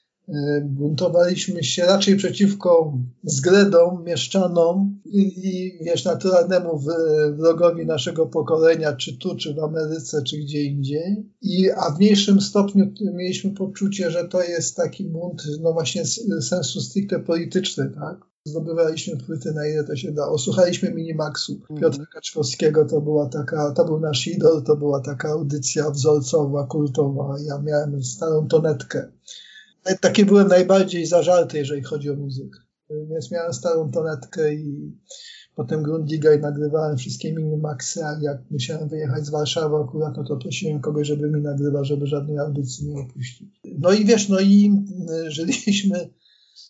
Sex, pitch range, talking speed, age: male, 150-175 Hz, 140 wpm, 50-69